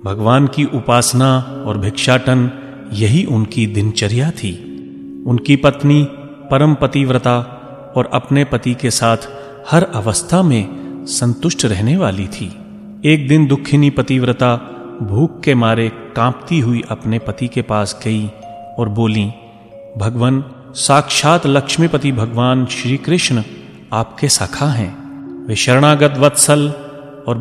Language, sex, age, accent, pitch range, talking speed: Hindi, male, 30-49, native, 110-140 Hz, 120 wpm